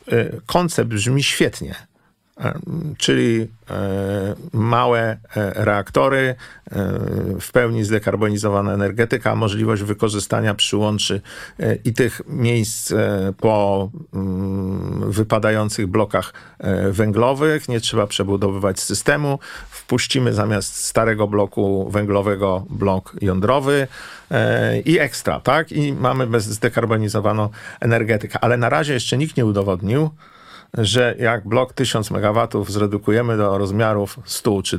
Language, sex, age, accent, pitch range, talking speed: Polish, male, 50-69, native, 100-125 Hz, 95 wpm